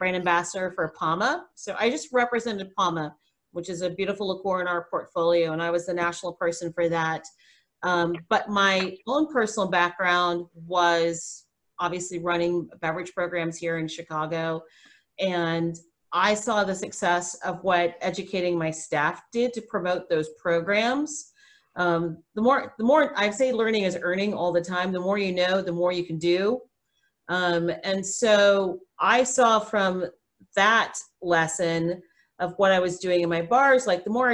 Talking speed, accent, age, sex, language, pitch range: 165 wpm, American, 40-59, female, English, 170-210 Hz